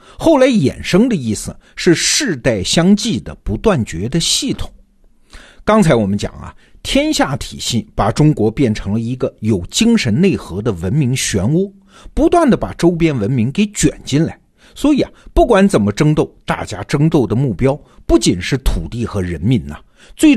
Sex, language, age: male, Chinese, 50-69